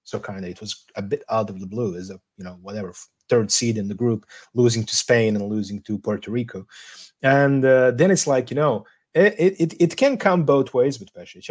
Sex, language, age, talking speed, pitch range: male, English, 30-49, 235 wpm, 115-155 Hz